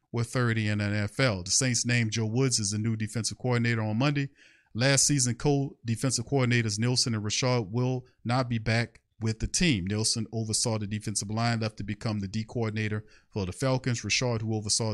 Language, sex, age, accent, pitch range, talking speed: English, male, 40-59, American, 115-130 Hz, 195 wpm